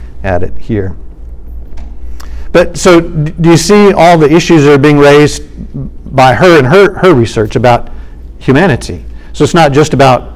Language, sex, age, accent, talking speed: English, male, 50-69, American, 160 wpm